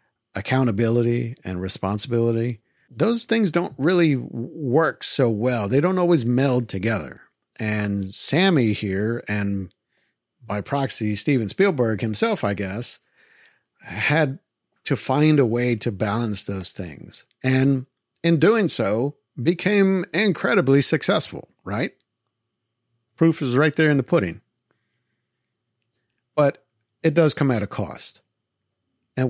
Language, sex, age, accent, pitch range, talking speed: English, male, 50-69, American, 105-140 Hz, 120 wpm